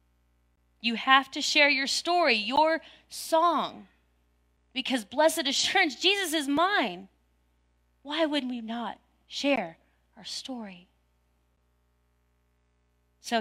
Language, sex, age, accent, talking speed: English, female, 30-49, American, 100 wpm